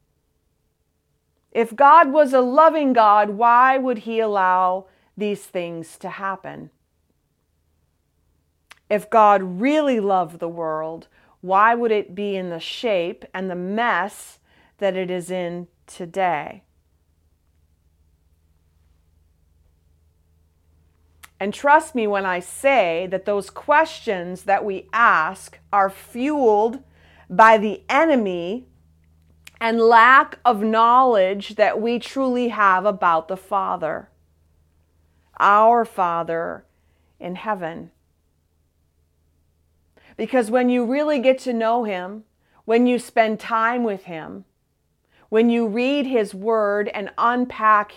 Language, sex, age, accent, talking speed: English, female, 40-59, American, 110 wpm